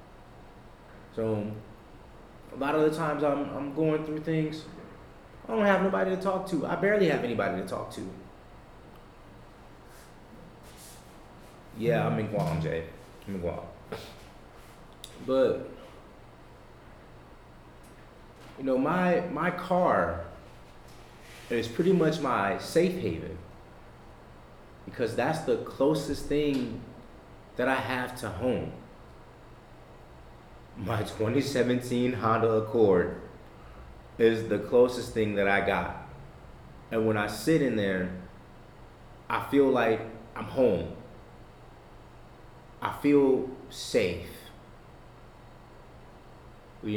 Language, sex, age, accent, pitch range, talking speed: English, male, 30-49, American, 95-135 Hz, 105 wpm